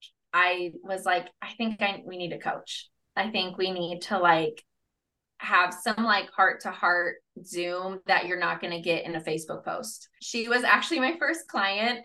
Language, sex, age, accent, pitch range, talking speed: English, female, 20-39, American, 185-245 Hz, 195 wpm